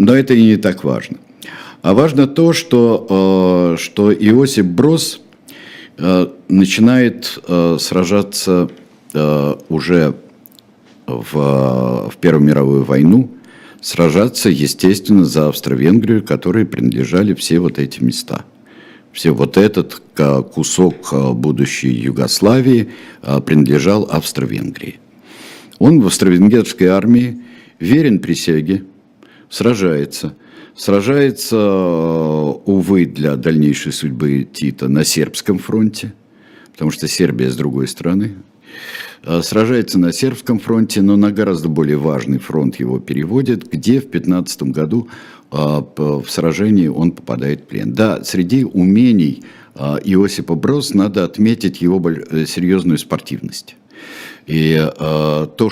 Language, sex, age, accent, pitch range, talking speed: Russian, male, 60-79, native, 75-105 Hz, 100 wpm